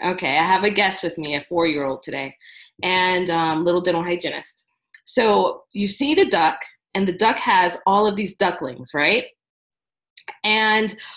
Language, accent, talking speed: English, American, 160 wpm